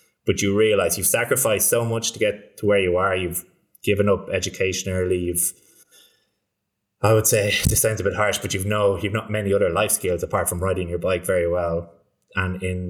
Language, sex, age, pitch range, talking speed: English, male, 20-39, 90-115 Hz, 210 wpm